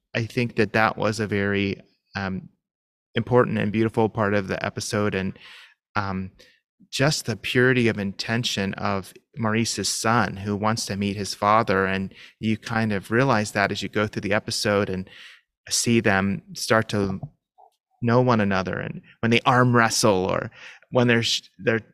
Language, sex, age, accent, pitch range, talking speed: English, male, 30-49, American, 100-125 Hz, 165 wpm